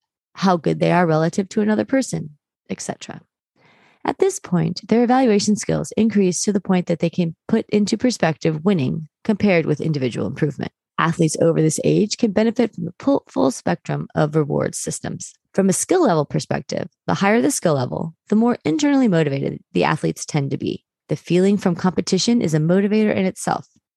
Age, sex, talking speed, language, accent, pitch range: 30-49, female, 180 wpm, English, American, 165-225 Hz